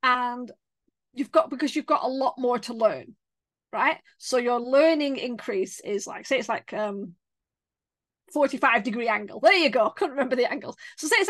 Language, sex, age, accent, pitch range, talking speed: English, female, 30-49, British, 225-305 Hz, 185 wpm